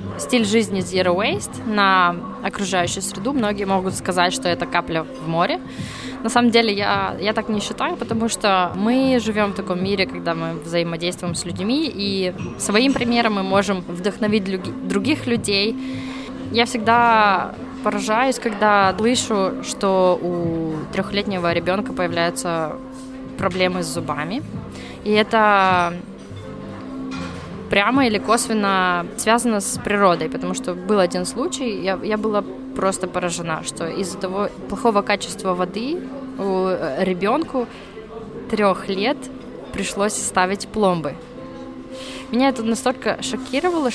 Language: Russian